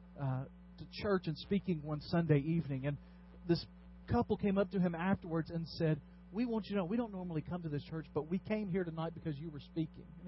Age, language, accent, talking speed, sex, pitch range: 40-59, English, American, 235 wpm, male, 130-200 Hz